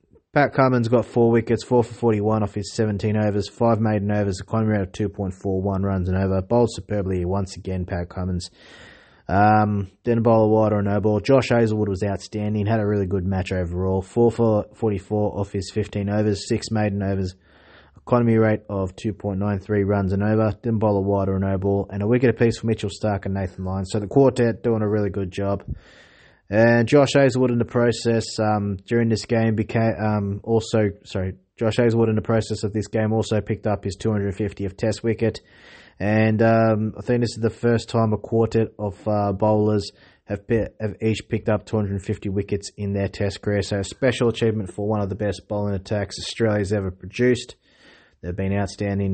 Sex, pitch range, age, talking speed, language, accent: male, 100-110 Hz, 20-39, 195 wpm, English, Australian